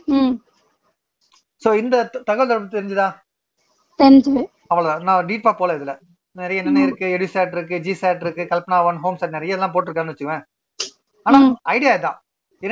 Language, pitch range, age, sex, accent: Tamil, 180-265 Hz, 30-49, male, native